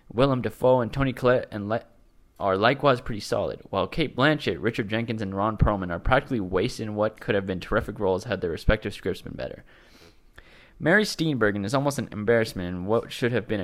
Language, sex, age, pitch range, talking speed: English, male, 20-39, 95-135 Hz, 200 wpm